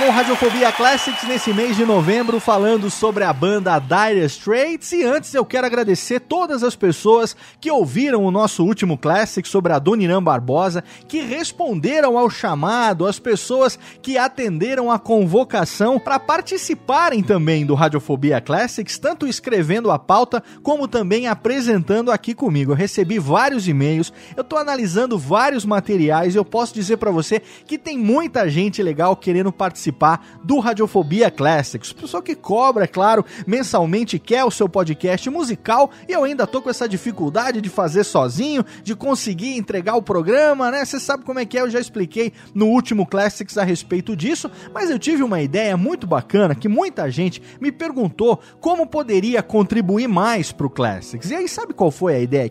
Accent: Brazilian